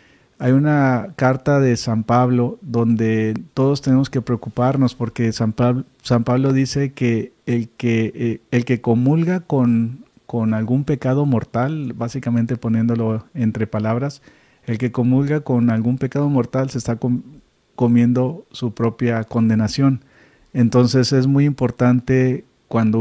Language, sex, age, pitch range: Spanish, male, 40-59, 115-135 Hz